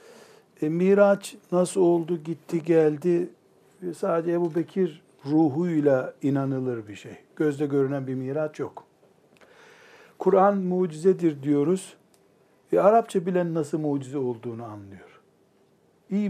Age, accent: 60-79, native